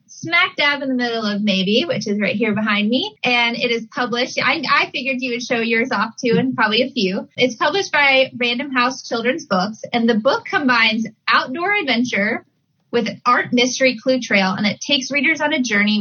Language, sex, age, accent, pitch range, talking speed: English, female, 20-39, American, 205-265 Hz, 210 wpm